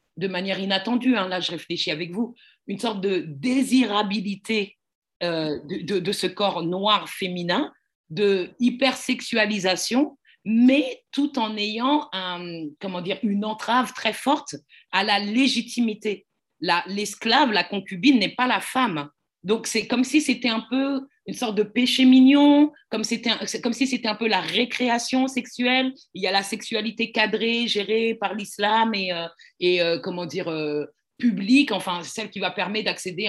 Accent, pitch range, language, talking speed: French, 185-245 Hz, French, 165 wpm